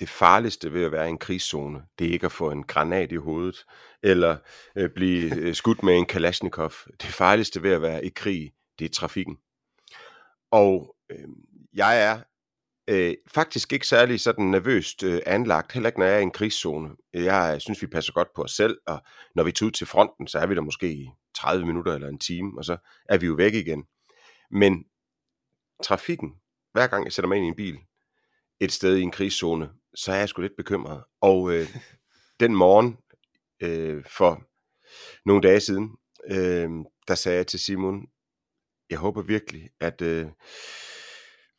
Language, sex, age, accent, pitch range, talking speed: Danish, male, 40-59, native, 85-105 Hz, 185 wpm